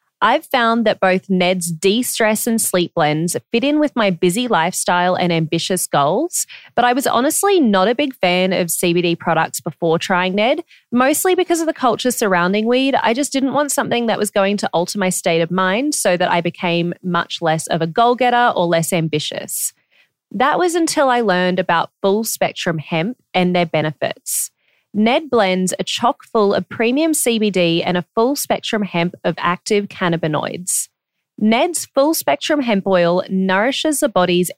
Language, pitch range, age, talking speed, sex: English, 180-245 Hz, 20-39, 170 wpm, female